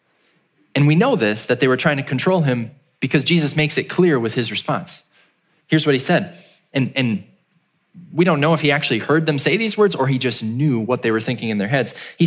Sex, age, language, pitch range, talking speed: male, 20-39, English, 145-200 Hz, 235 wpm